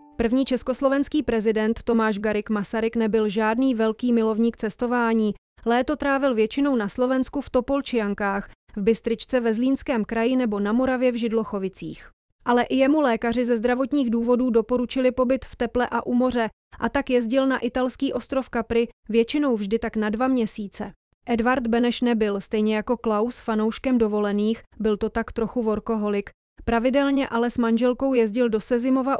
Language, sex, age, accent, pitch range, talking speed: English, female, 30-49, Czech, 220-255 Hz, 155 wpm